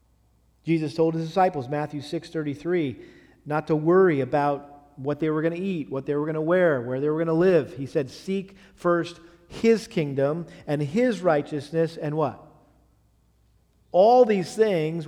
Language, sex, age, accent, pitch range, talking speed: English, male, 40-59, American, 135-165 Hz, 165 wpm